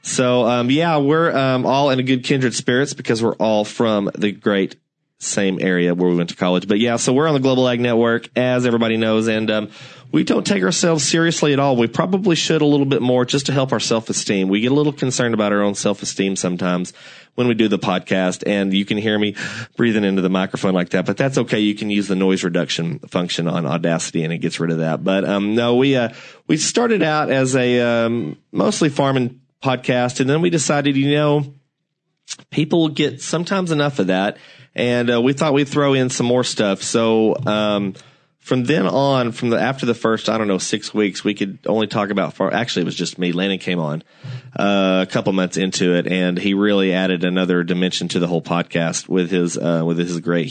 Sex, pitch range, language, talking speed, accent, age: male, 95-130 Hz, English, 225 wpm, American, 30-49